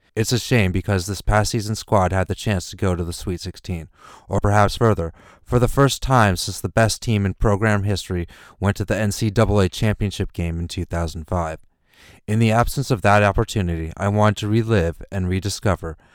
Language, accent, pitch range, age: English, American, 90-110 Hz, 30-49